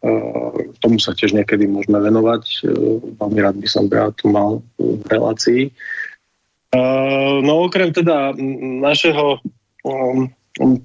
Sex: male